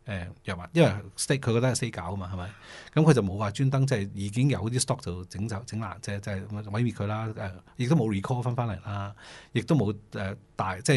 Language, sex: Chinese, male